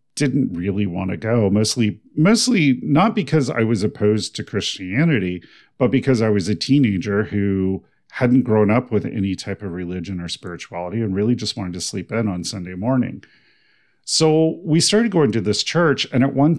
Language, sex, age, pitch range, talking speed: English, male, 40-59, 100-125 Hz, 185 wpm